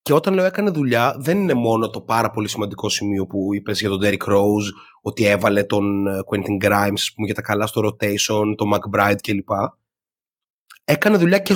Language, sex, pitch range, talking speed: Greek, male, 110-150 Hz, 190 wpm